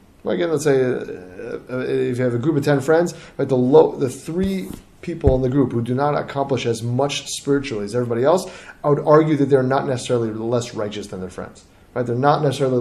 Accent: American